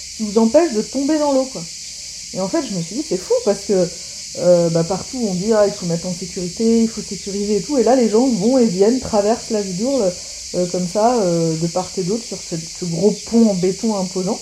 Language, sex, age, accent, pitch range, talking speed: French, female, 30-49, French, 180-235 Hz, 250 wpm